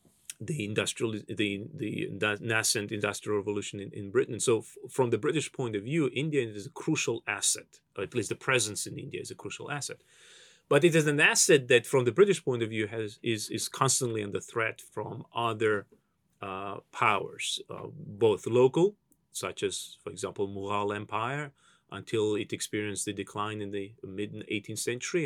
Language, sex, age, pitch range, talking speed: English, male, 30-49, 105-150 Hz, 180 wpm